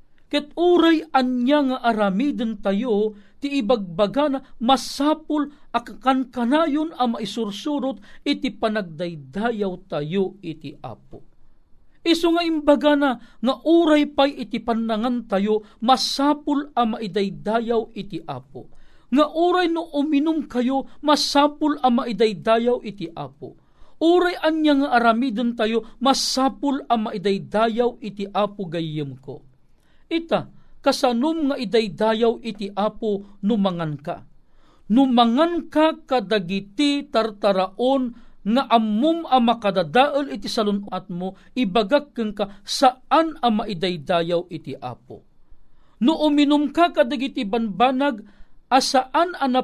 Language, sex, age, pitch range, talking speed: Filipino, male, 50-69, 200-280 Hz, 105 wpm